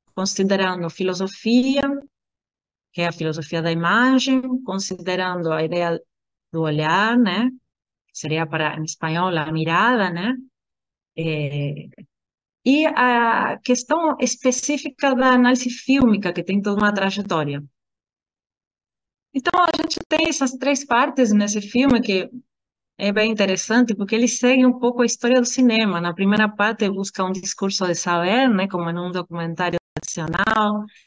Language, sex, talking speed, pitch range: Portuguese, female, 135 wpm, 165-210 Hz